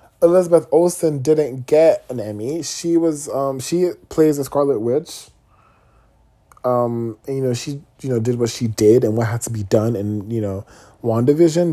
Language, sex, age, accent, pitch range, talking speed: English, male, 20-39, American, 120-160 Hz, 180 wpm